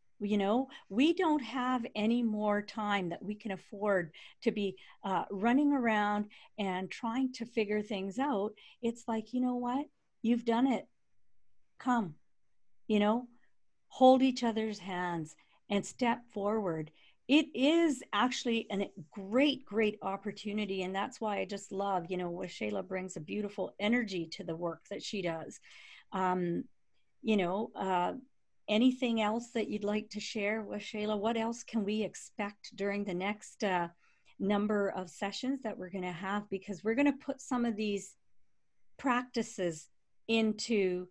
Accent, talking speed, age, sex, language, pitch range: American, 160 wpm, 50-69, female, English, 190-235 Hz